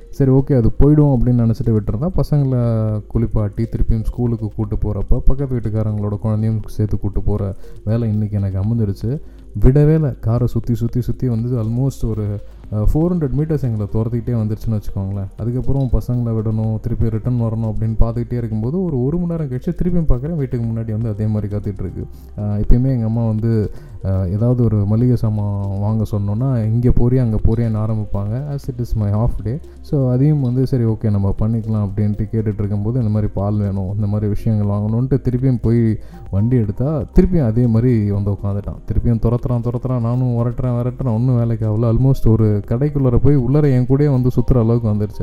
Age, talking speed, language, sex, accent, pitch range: 20-39, 170 wpm, Tamil, male, native, 105-125 Hz